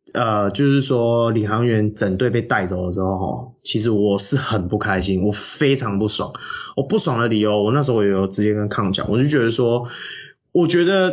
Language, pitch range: Chinese, 105-145 Hz